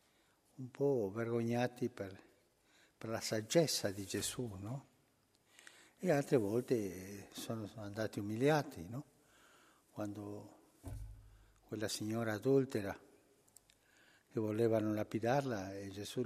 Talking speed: 95 wpm